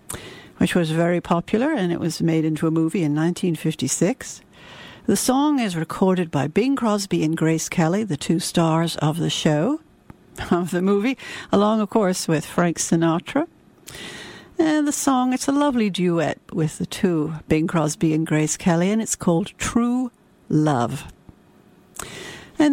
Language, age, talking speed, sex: English, 60-79, 155 wpm, female